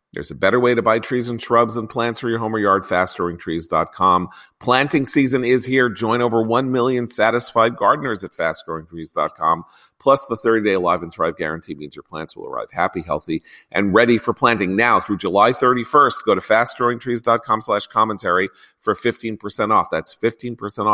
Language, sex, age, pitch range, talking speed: English, male, 40-59, 95-120 Hz, 175 wpm